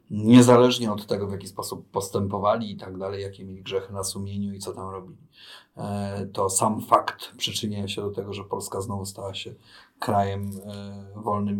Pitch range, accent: 95-105 Hz, native